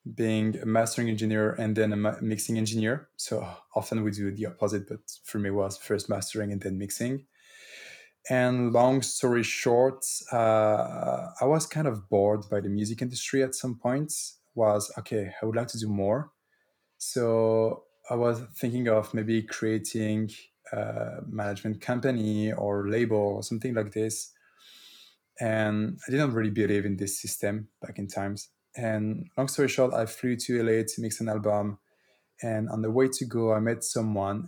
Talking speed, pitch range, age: 170 wpm, 105-120 Hz, 20-39